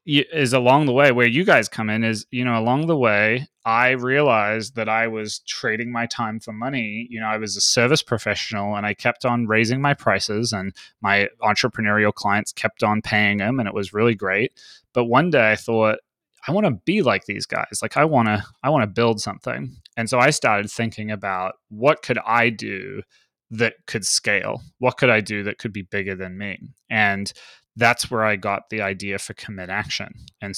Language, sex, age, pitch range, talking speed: English, male, 20-39, 100-120 Hz, 210 wpm